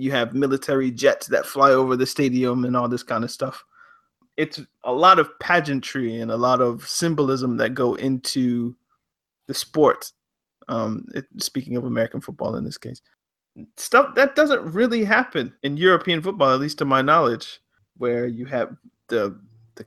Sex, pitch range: male, 120-175 Hz